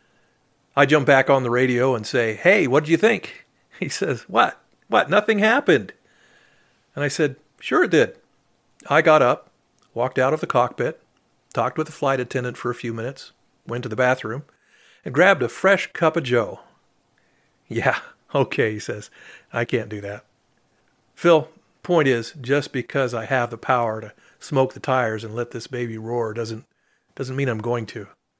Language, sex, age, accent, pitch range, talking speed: English, male, 50-69, American, 120-145 Hz, 180 wpm